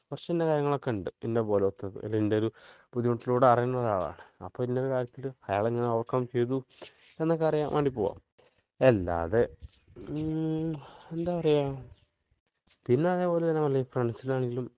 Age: 20-39